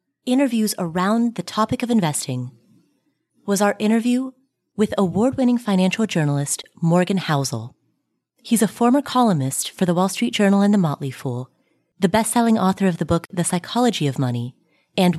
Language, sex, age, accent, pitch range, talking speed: English, female, 30-49, American, 165-230 Hz, 155 wpm